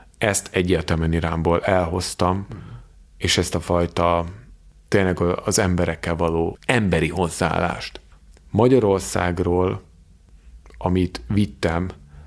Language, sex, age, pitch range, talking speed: Hungarian, male, 30-49, 80-100 Hz, 85 wpm